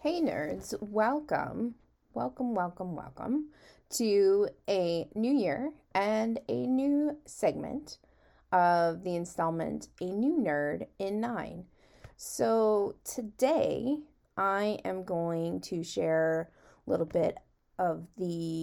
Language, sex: English, female